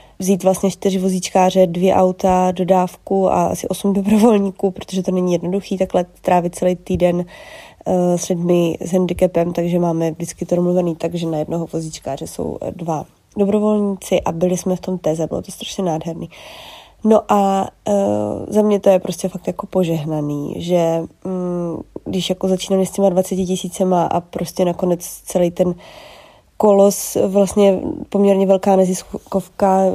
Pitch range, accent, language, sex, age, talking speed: 175-195 Hz, native, Czech, female, 20-39, 150 wpm